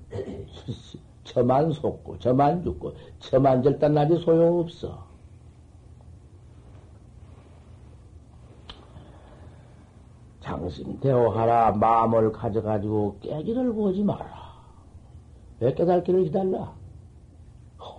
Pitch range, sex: 105-145 Hz, male